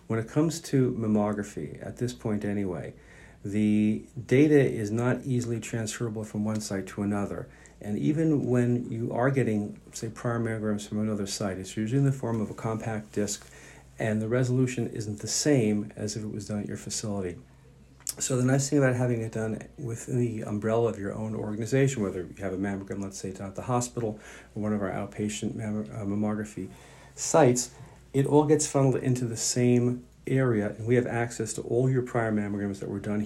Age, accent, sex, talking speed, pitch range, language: 50-69, American, male, 195 wpm, 105-125 Hz, English